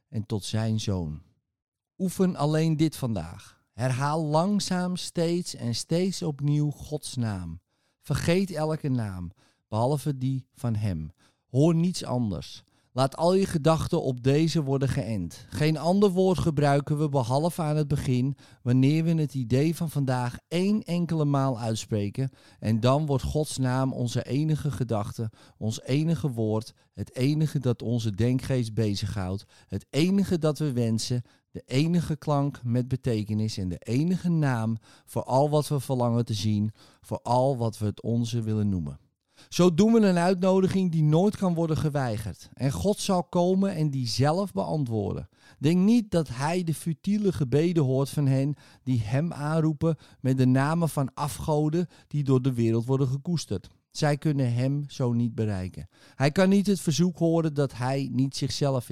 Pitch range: 120-155 Hz